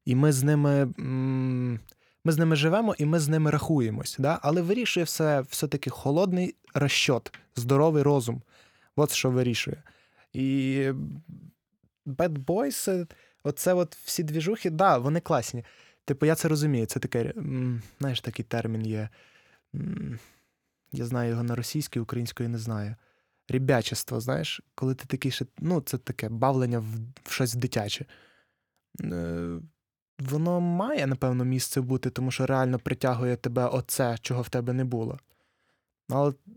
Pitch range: 125-160 Hz